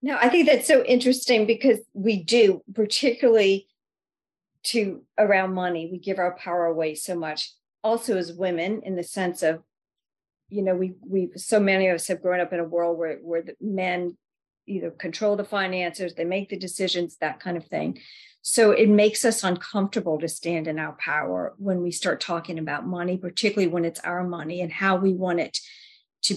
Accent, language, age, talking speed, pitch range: American, English, 50-69, 190 wpm, 175-215 Hz